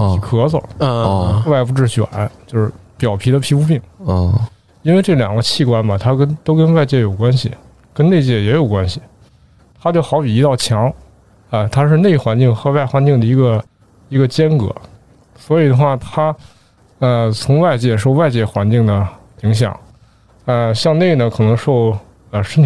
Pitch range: 110-140 Hz